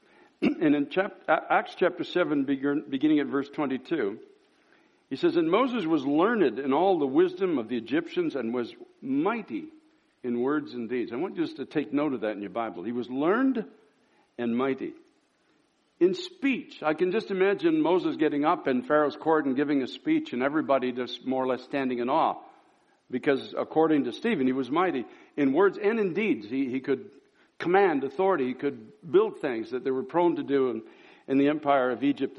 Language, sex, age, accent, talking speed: English, male, 60-79, American, 190 wpm